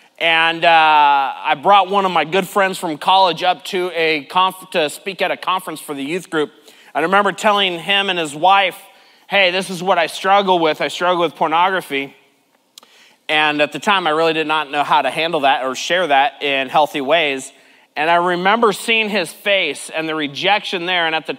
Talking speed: 210 wpm